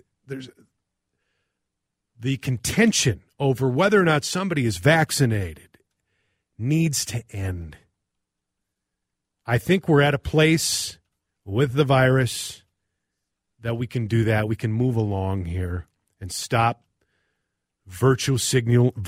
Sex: male